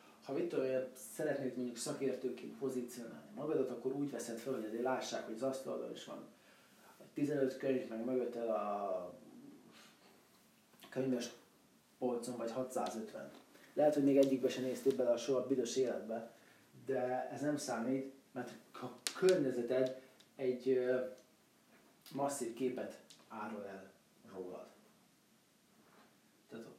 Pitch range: 115-130 Hz